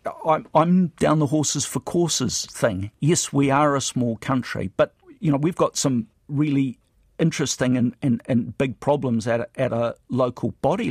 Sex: male